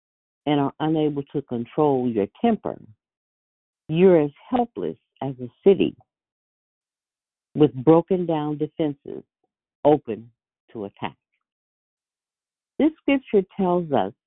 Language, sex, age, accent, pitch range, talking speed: English, female, 50-69, American, 120-170 Hz, 100 wpm